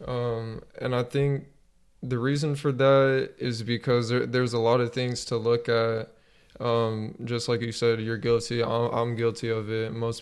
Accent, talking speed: American, 180 wpm